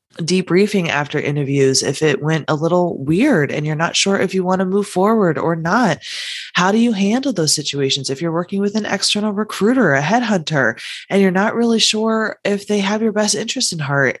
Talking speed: 205 wpm